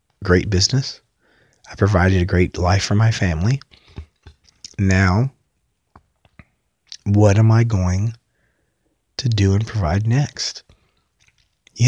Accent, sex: American, male